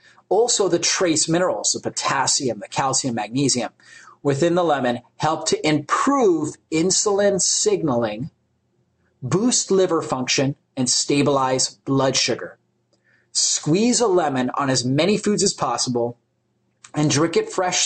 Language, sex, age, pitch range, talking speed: English, male, 30-49, 140-185 Hz, 125 wpm